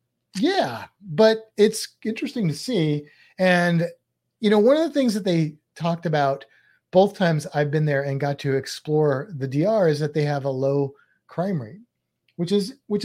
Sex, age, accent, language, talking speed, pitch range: male, 30-49, American, English, 180 wpm, 140-190 Hz